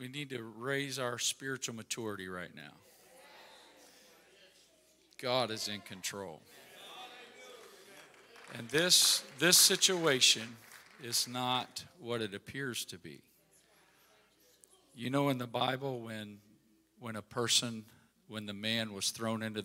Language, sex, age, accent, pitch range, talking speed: English, male, 50-69, American, 110-145 Hz, 120 wpm